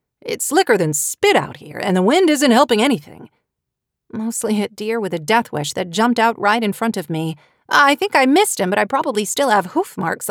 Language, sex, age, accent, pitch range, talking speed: English, female, 40-59, American, 180-265 Hz, 225 wpm